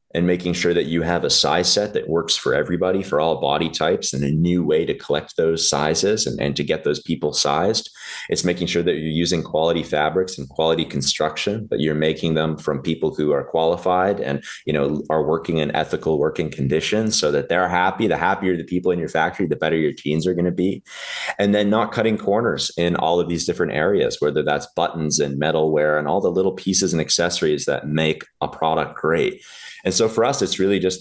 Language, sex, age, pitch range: English, male, 30-49, 75-90 Hz